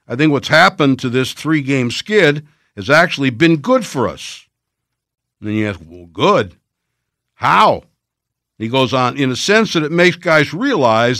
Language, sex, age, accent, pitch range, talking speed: English, male, 60-79, American, 130-165 Hz, 170 wpm